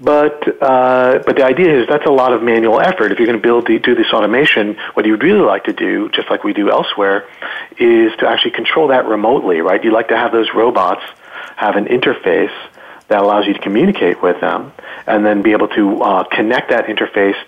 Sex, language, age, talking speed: male, English, 40-59, 225 wpm